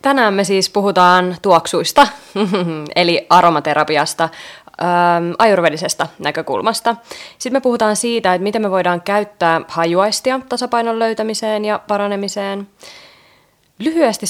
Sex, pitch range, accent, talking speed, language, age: female, 165-210 Hz, native, 100 wpm, Finnish, 20-39